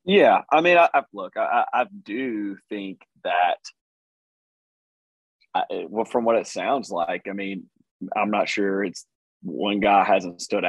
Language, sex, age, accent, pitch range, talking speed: English, male, 30-49, American, 95-115 Hz, 150 wpm